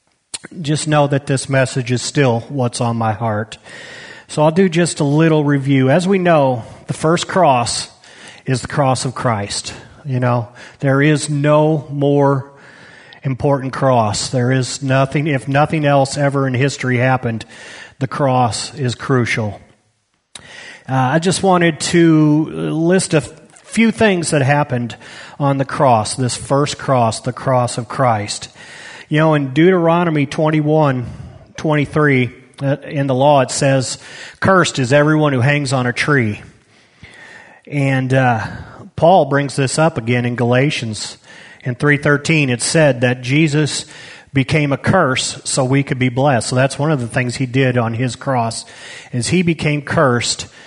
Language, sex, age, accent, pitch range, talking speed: English, male, 40-59, American, 125-150 Hz, 150 wpm